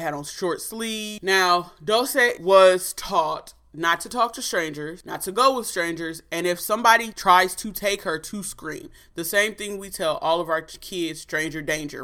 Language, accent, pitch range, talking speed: English, American, 160-205 Hz, 190 wpm